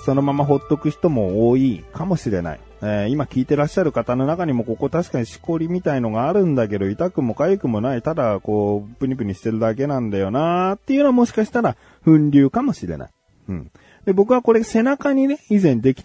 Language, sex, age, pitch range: Japanese, male, 30-49, 105-170 Hz